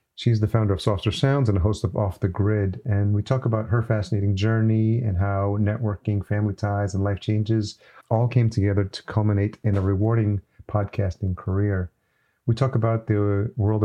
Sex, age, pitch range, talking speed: male, 40-59, 95-110 Hz, 185 wpm